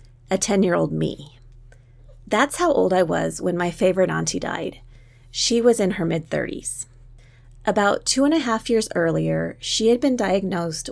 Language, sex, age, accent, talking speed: English, female, 30-49, American, 160 wpm